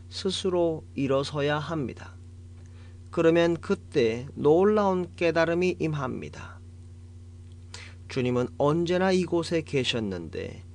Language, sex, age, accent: Korean, male, 40-59, native